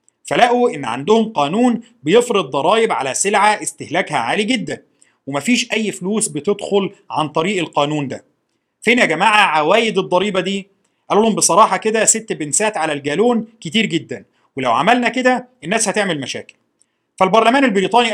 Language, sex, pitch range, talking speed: Arabic, male, 160-230 Hz, 140 wpm